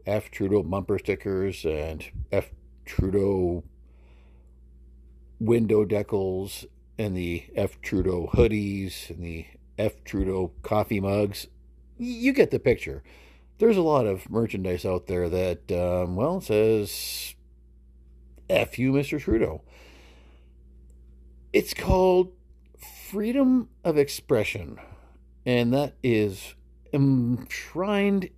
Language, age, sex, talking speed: English, 50-69, male, 100 wpm